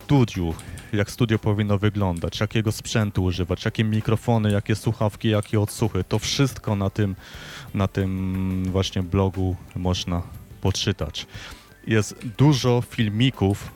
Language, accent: Polish, native